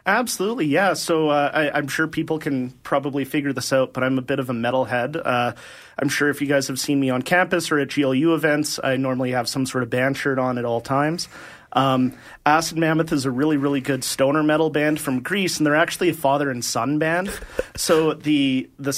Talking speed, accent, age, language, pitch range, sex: 225 wpm, American, 30-49, English, 125-150 Hz, male